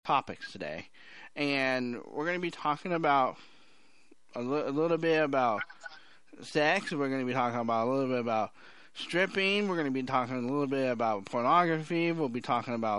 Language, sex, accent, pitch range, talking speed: English, male, American, 125-175 Hz, 190 wpm